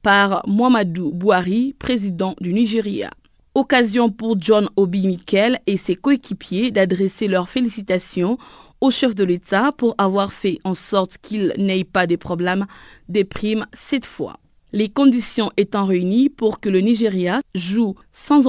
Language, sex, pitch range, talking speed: French, female, 185-230 Hz, 145 wpm